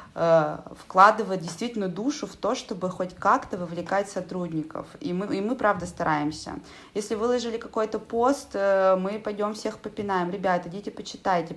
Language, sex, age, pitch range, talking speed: Russian, female, 30-49, 180-225 Hz, 140 wpm